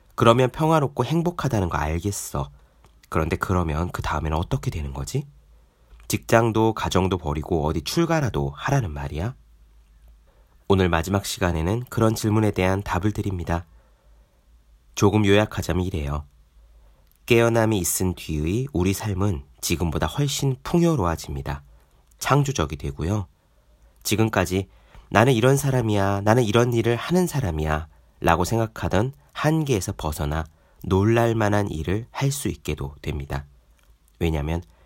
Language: Korean